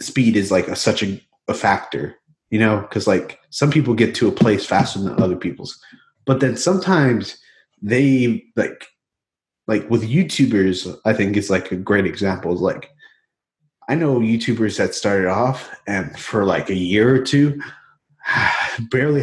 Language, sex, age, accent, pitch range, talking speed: English, male, 30-49, American, 100-135 Hz, 160 wpm